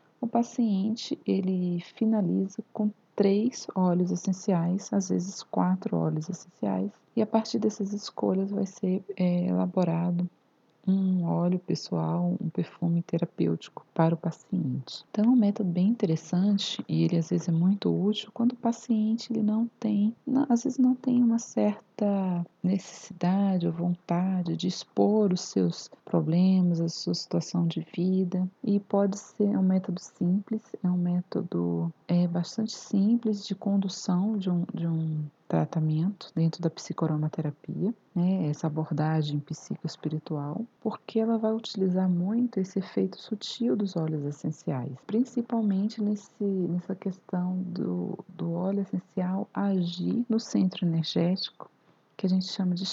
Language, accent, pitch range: Portuguese, Brazilian, 170-210 Hz